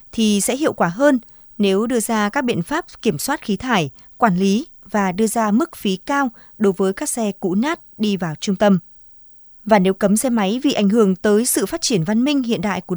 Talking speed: 230 wpm